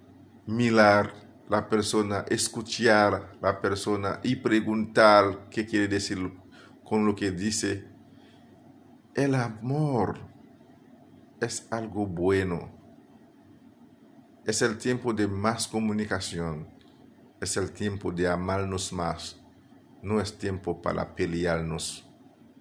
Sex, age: male, 50-69